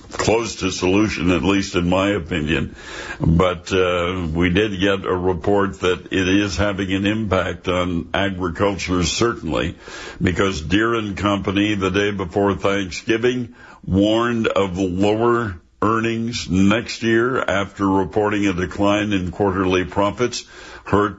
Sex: male